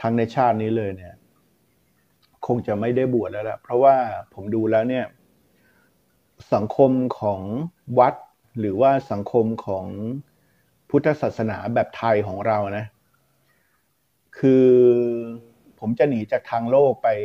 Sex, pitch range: male, 105-125 Hz